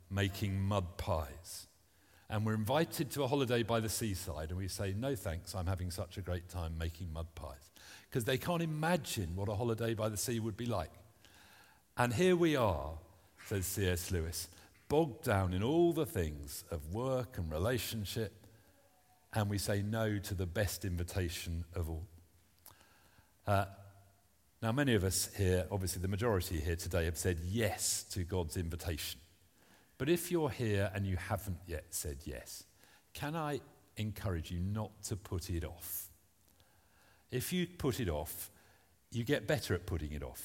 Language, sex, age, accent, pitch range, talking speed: English, male, 50-69, British, 85-110 Hz, 170 wpm